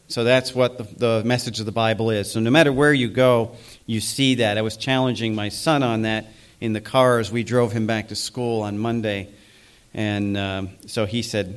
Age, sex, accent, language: 40-59, male, American, English